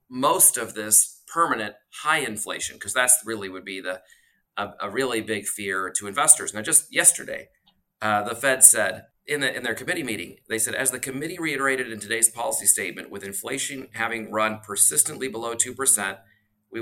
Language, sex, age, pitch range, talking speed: English, male, 40-59, 110-130 Hz, 180 wpm